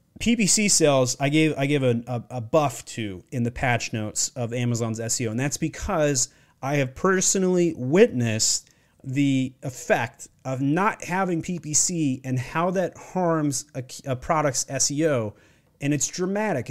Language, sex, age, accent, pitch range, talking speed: English, male, 30-49, American, 125-165 Hz, 150 wpm